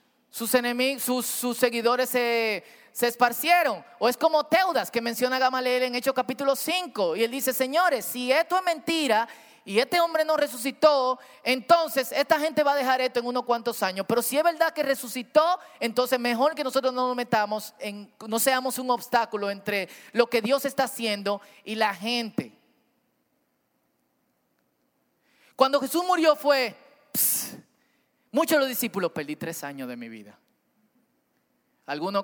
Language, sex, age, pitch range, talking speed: Spanish, male, 30-49, 220-270 Hz, 155 wpm